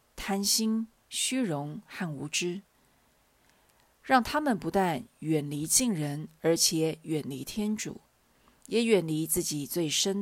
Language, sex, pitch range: Chinese, female, 160-210 Hz